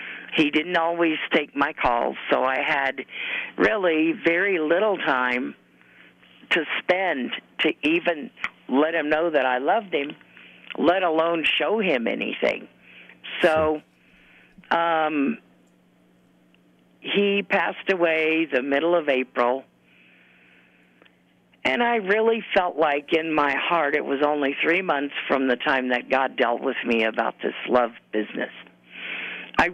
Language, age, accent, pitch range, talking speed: English, 50-69, American, 120-175 Hz, 130 wpm